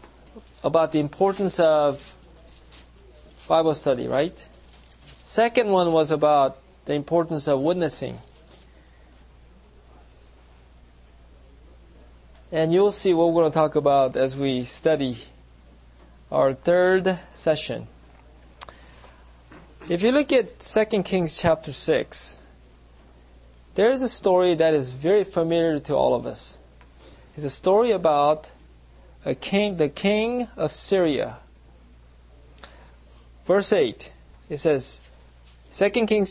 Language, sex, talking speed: English, male, 110 wpm